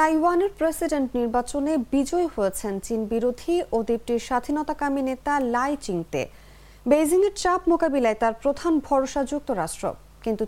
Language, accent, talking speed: English, Indian, 125 wpm